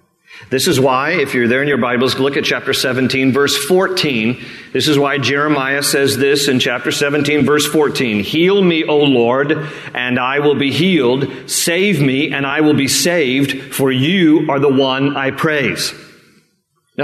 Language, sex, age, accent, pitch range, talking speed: English, male, 40-59, American, 140-175 Hz, 175 wpm